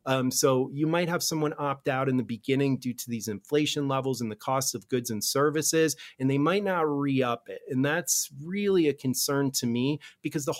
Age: 30-49